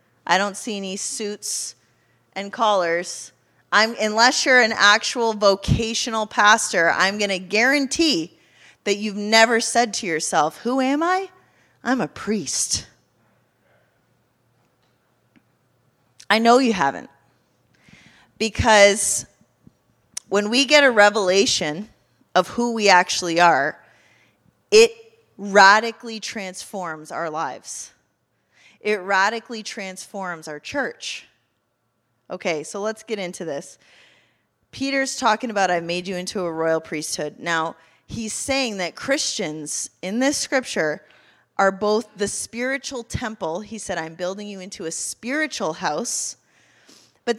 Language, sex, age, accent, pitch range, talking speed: English, female, 30-49, American, 180-240 Hz, 120 wpm